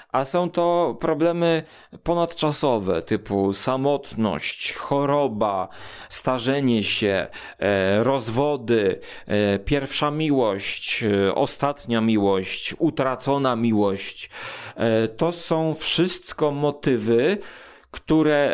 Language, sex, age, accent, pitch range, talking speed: Polish, male, 40-59, native, 110-155 Hz, 85 wpm